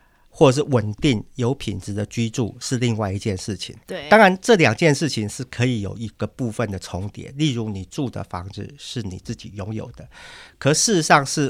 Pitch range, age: 105-135 Hz, 50-69